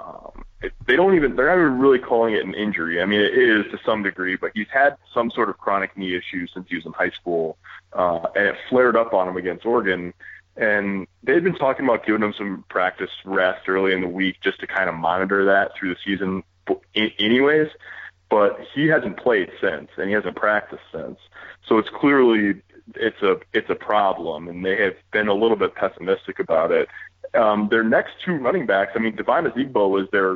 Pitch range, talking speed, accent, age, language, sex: 90-115 Hz, 215 wpm, American, 20-39, English, male